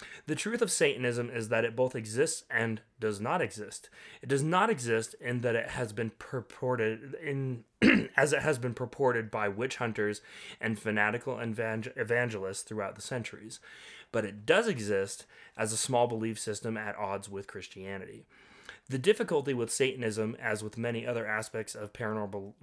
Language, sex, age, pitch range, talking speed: English, male, 20-39, 105-125 Hz, 165 wpm